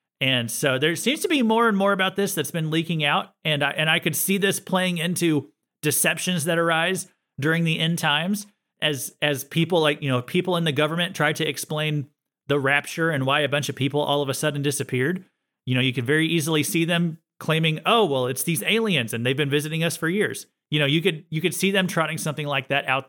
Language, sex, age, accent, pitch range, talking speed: English, male, 30-49, American, 145-190 Hz, 235 wpm